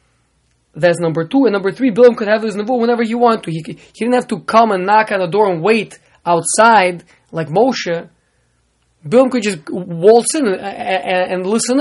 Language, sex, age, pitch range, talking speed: English, male, 20-39, 175-240 Hz, 205 wpm